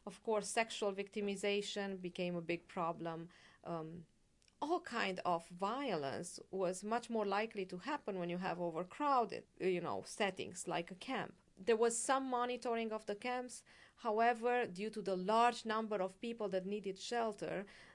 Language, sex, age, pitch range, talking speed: English, female, 40-59, 170-220 Hz, 155 wpm